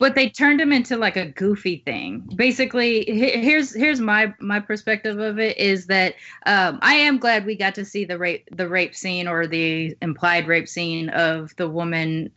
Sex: female